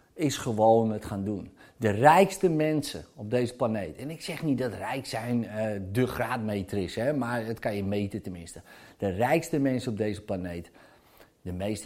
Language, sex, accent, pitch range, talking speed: Dutch, male, Dutch, 115-185 Hz, 185 wpm